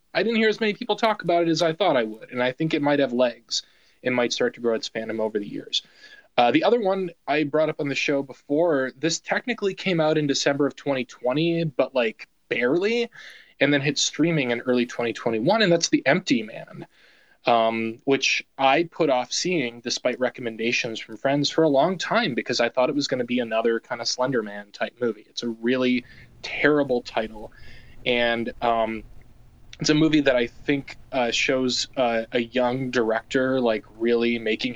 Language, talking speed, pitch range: English, 200 wpm, 115-155 Hz